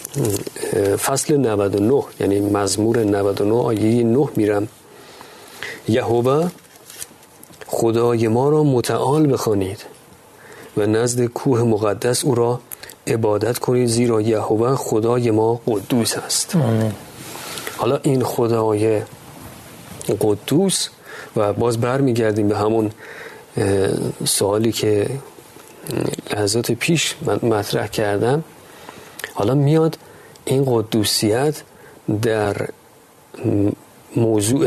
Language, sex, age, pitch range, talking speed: Persian, male, 40-59, 105-130 Hz, 85 wpm